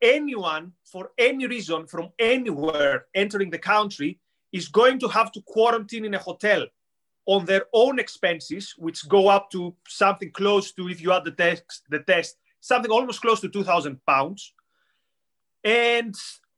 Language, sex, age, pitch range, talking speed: English, male, 30-49, 175-230 Hz, 150 wpm